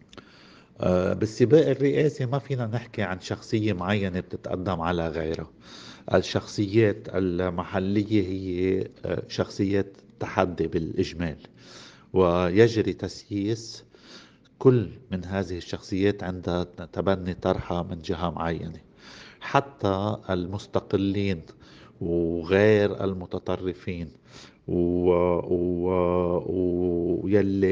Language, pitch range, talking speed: Arabic, 90-105 Hz, 75 wpm